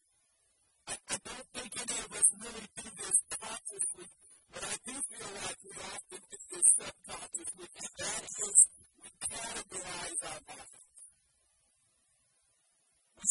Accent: American